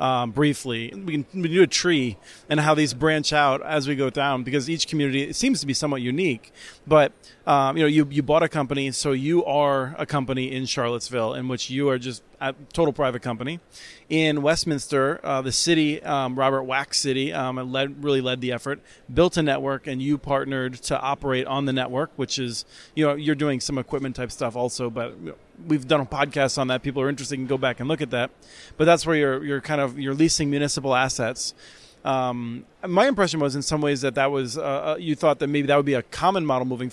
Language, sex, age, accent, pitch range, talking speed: English, male, 30-49, American, 135-155 Hz, 220 wpm